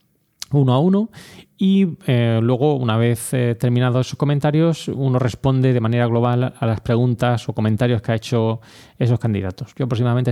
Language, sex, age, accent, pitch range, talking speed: Spanish, male, 20-39, Spanish, 110-130 Hz, 170 wpm